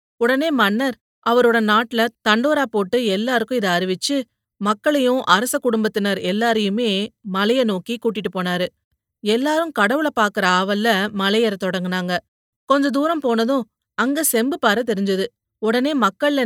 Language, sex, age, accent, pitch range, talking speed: Tamil, female, 30-49, native, 200-255 Hz, 115 wpm